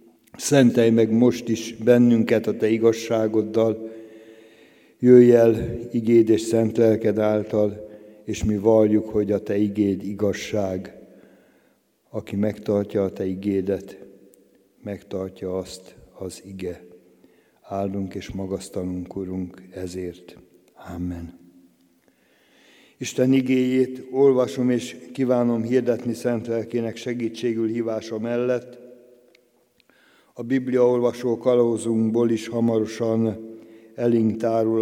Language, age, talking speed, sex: Hungarian, 60-79, 90 wpm, male